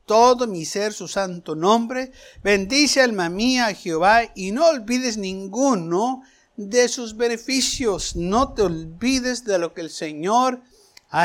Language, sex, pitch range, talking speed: Spanish, male, 195-255 Hz, 140 wpm